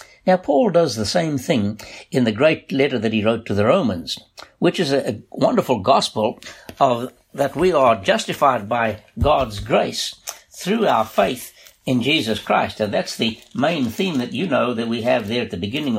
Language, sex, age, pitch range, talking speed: English, male, 60-79, 120-195 Hz, 190 wpm